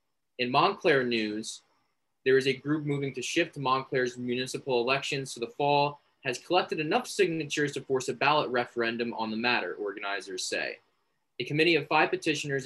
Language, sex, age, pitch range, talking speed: English, male, 20-39, 115-140 Hz, 170 wpm